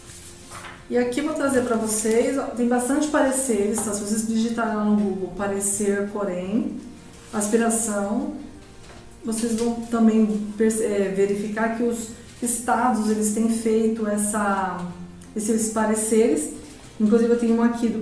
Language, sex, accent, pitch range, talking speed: Portuguese, female, Brazilian, 210-245 Hz, 135 wpm